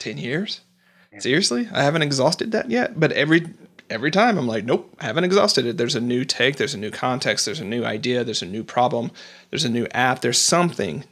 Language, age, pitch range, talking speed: English, 40-59, 125-165 Hz, 220 wpm